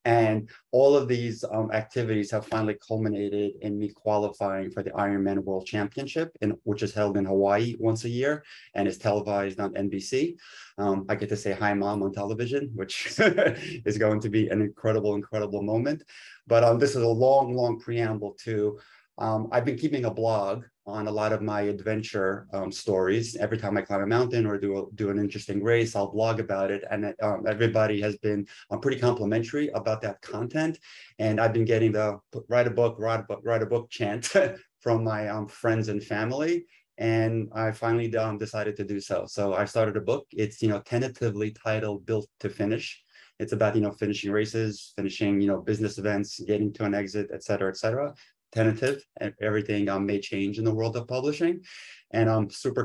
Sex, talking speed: male, 190 wpm